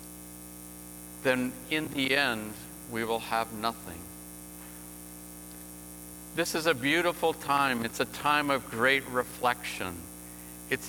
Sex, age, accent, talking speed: male, 50-69, American, 110 wpm